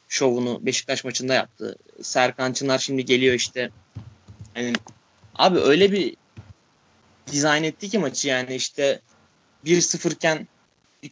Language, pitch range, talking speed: Turkish, 125-165 Hz, 120 wpm